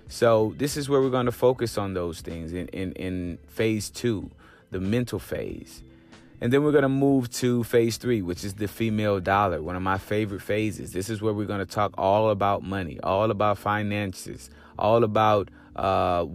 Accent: American